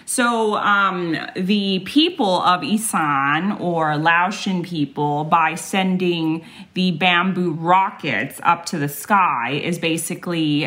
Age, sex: 30-49, female